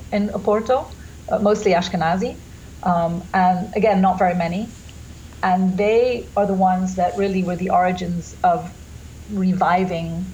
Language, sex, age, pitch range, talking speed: English, female, 40-59, 175-205 Hz, 135 wpm